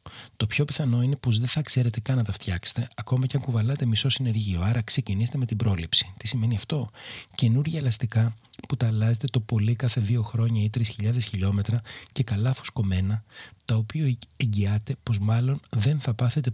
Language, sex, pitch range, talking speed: Greek, male, 110-135 Hz, 180 wpm